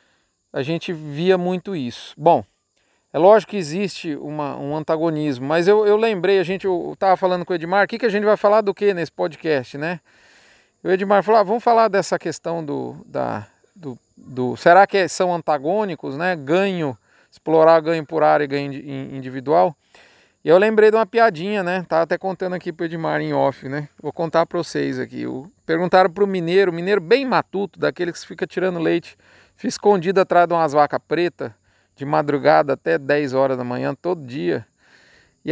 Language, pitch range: Portuguese, 150-195 Hz